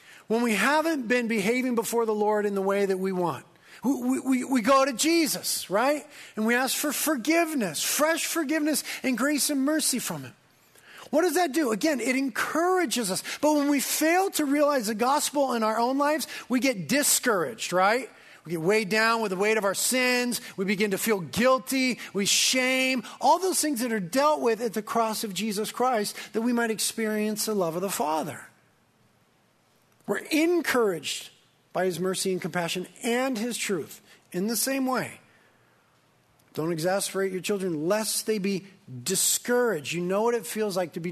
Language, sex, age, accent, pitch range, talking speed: English, male, 40-59, American, 175-260 Hz, 185 wpm